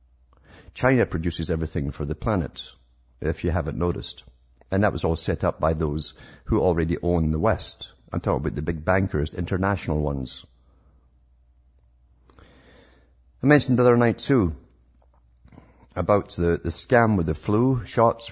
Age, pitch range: 50-69, 75-100 Hz